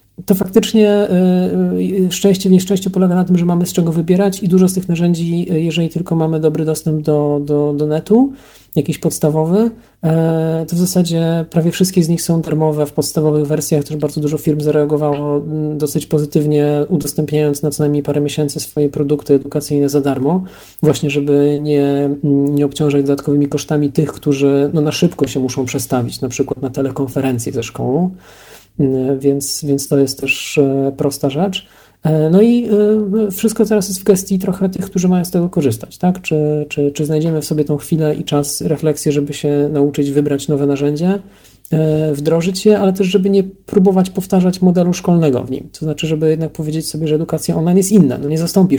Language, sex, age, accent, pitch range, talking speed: Polish, male, 40-59, native, 145-180 Hz, 175 wpm